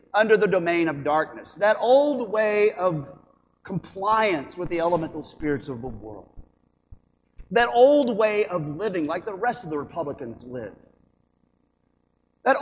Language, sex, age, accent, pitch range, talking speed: English, male, 40-59, American, 145-235 Hz, 145 wpm